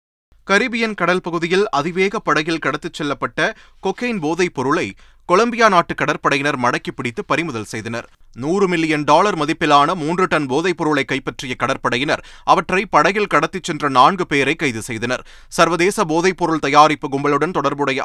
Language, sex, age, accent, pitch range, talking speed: Tamil, male, 30-49, native, 130-175 Hz, 130 wpm